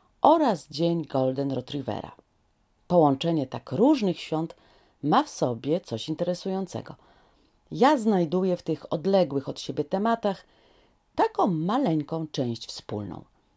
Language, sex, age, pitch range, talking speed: Polish, female, 40-59, 135-210 Hz, 110 wpm